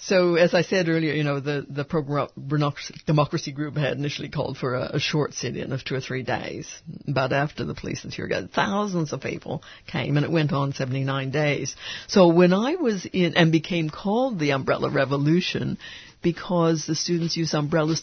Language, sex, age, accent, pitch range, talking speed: English, female, 60-79, American, 140-170 Hz, 195 wpm